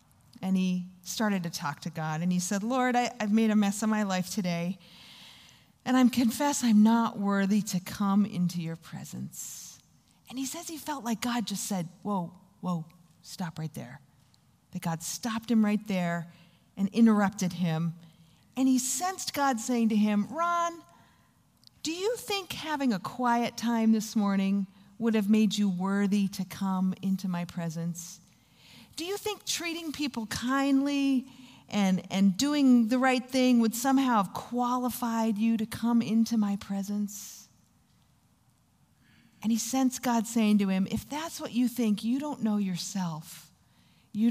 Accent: American